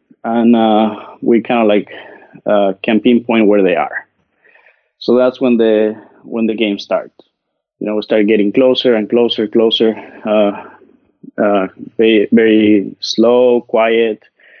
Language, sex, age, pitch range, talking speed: English, male, 20-39, 105-120 Hz, 145 wpm